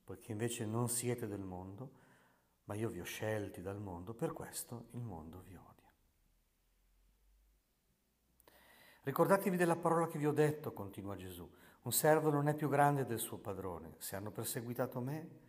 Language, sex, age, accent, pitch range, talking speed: Italian, male, 50-69, native, 100-135 Hz, 165 wpm